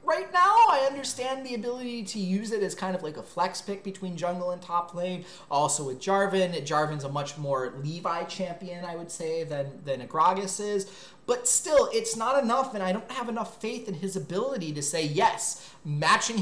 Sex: male